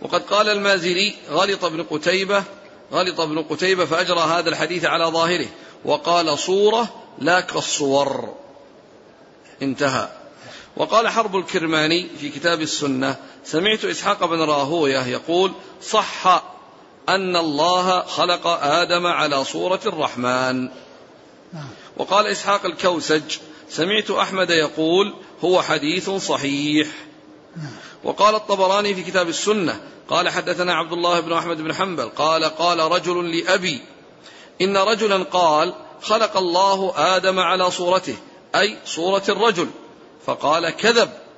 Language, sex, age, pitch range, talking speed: Arabic, male, 50-69, 155-195 Hz, 110 wpm